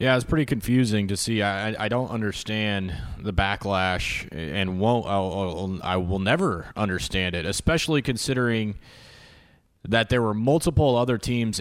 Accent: American